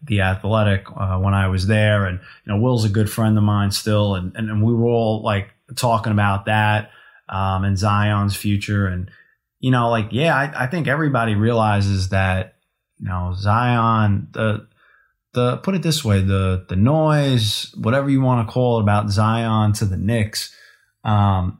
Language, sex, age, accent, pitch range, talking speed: English, male, 20-39, American, 100-120 Hz, 185 wpm